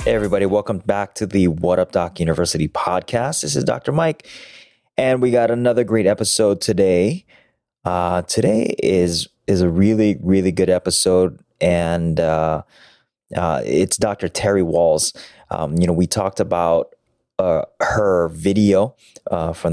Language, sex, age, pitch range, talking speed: English, male, 20-39, 85-105 Hz, 150 wpm